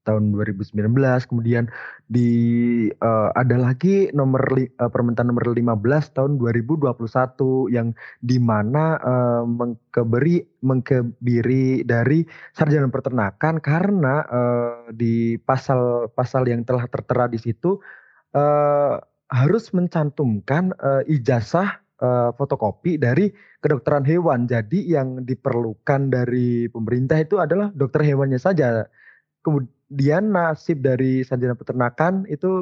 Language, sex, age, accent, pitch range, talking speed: Indonesian, male, 20-39, native, 120-150 Hz, 105 wpm